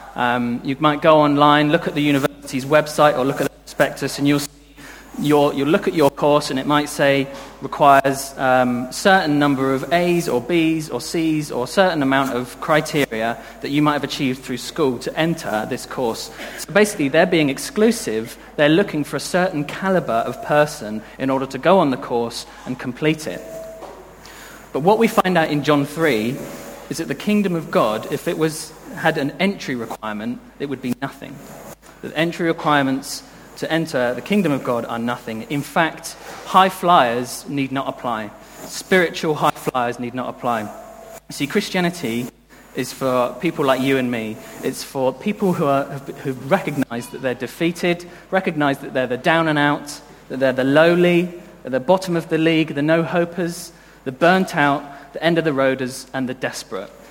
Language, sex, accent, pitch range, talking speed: English, male, British, 130-165 Hz, 185 wpm